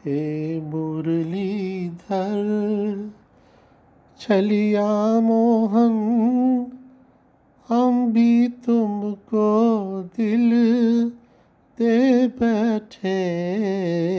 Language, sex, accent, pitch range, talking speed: Hindi, male, native, 190-235 Hz, 40 wpm